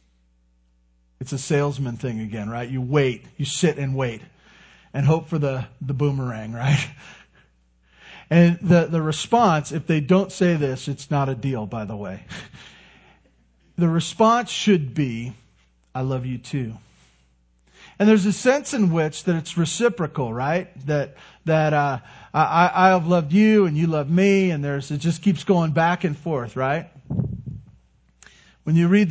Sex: male